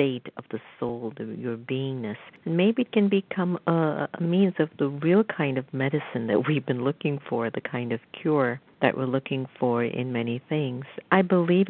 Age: 50-69